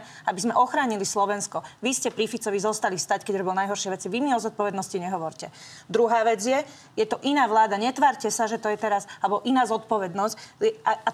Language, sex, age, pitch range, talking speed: Slovak, female, 30-49, 200-235 Hz, 190 wpm